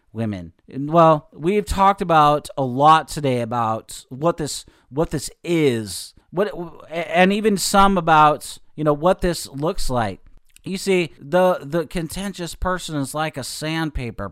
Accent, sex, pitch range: American, male, 140-185 Hz